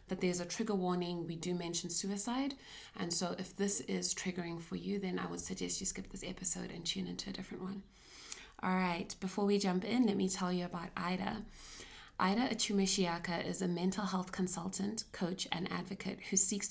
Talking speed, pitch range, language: 200 wpm, 175-200 Hz, English